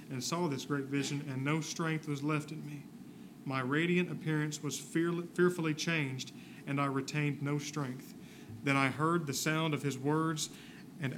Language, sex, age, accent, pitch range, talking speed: English, male, 40-59, American, 135-155 Hz, 170 wpm